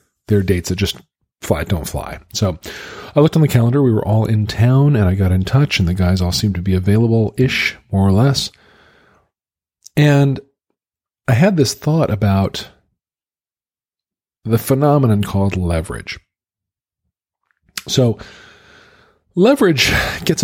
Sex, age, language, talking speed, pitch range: male, 40-59, English, 140 wpm, 95-120 Hz